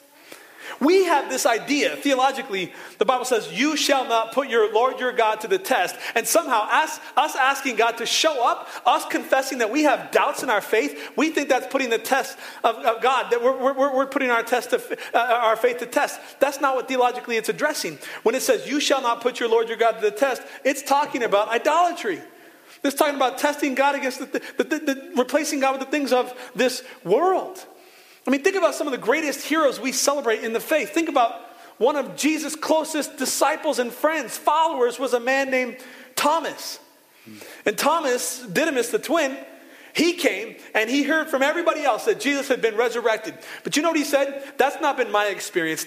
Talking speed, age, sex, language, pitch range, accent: 210 wpm, 30-49, male, English, 240-305 Hz, American